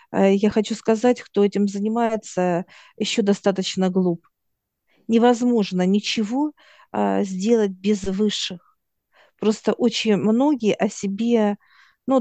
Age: 50-69